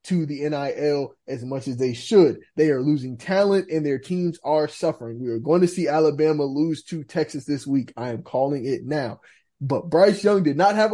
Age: 20-39